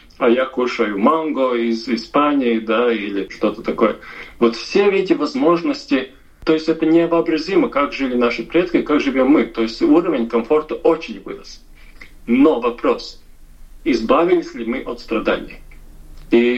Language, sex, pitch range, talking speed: Russian, male, 120-175 Hz, 140 wpm